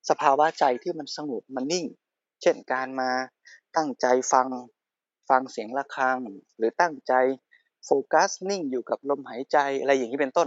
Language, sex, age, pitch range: Thai, male, 20-39, 125-170 Hz